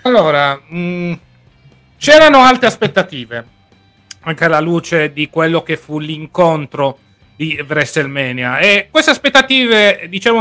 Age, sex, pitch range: 30-49, male, 135-190 Hz